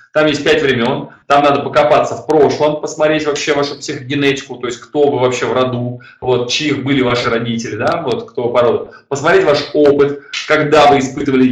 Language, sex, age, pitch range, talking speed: Russian, male, 20-39, 120-145 Hz, 190 wpm